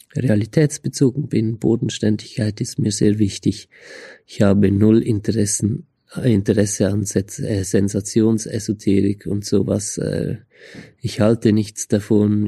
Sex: male